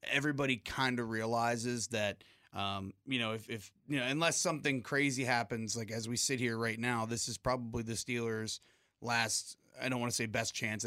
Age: 30-49